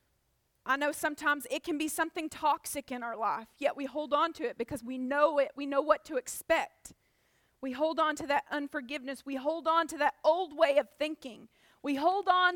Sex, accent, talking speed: female, American, 210 wpm